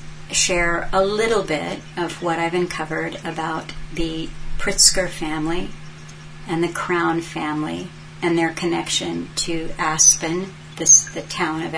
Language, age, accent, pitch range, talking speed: English, 50-69, American, 155-175 Hz, 125 wpm